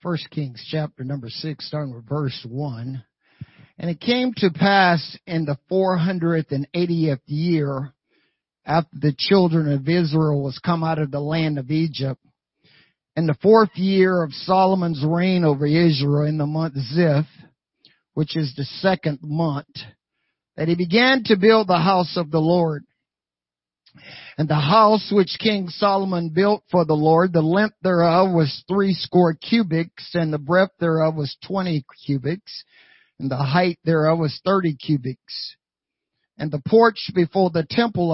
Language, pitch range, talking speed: English, 145-180 Hz, 150 wpm